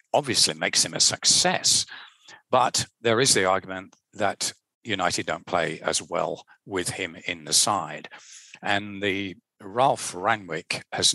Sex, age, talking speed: male, 50-69, 140 wpm